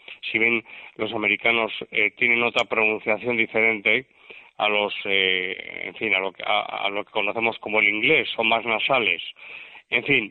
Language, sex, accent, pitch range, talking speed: Spanish, male, Spanish, 105-125 Hz, 175 wpm